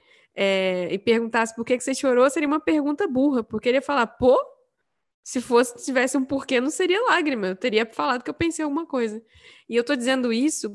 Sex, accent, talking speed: female, Brazilian, 210 wpm